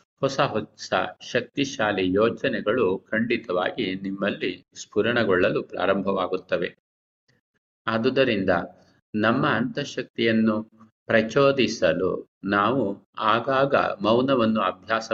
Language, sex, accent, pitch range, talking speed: Kannada, male, native, 95-120 Hz, 65 wpm